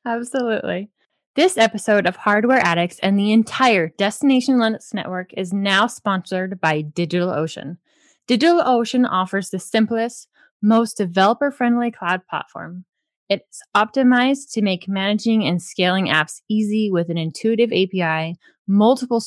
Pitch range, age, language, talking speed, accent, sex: 180-230 Hz, 20-39, English, 120 wpm, American, female